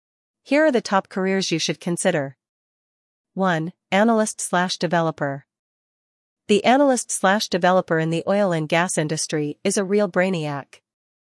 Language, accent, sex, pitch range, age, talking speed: English, American, female, 160-205 Hz, 40-59, 115 wpm